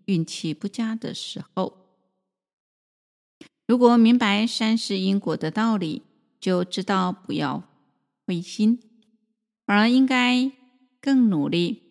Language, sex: Chinese, female